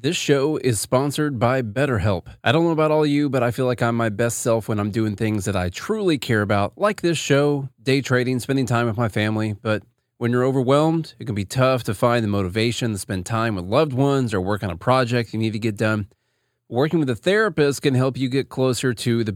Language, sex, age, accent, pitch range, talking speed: English, male, 30-49, American, 110-140 Hz, 245 wpm